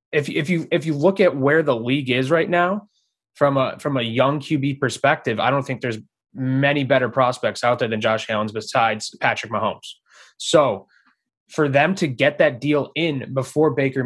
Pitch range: 120-150 Hz